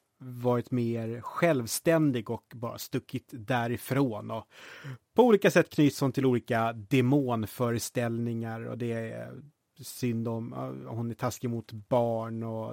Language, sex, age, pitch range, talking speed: Swedish, male, 30-49, 120-145 Hz, 125 wpm